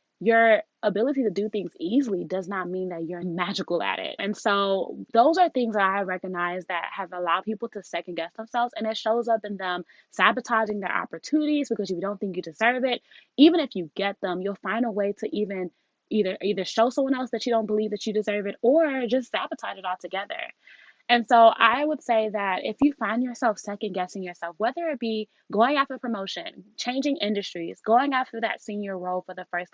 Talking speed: 210 wpm